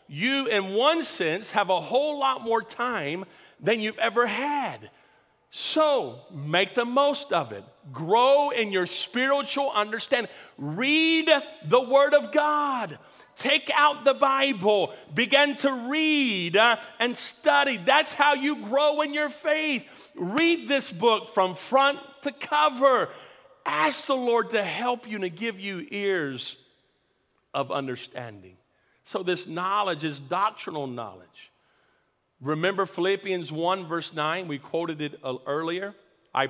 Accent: American